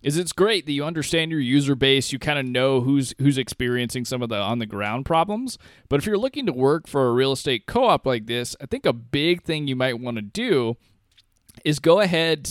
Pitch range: 120-150 Hz